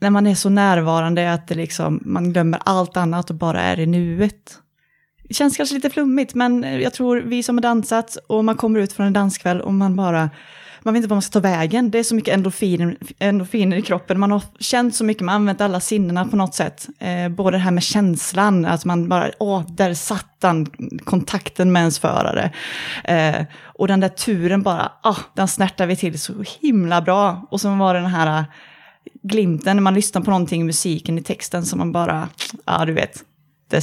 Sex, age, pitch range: female, 20-39, 175-205 Hz